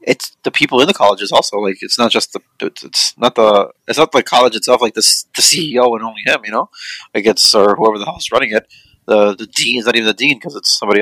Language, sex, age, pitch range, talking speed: English, male, 30-49, 105-120 Hz, 270 wpm